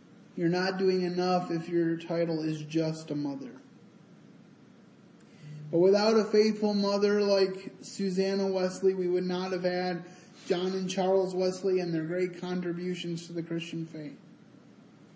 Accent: American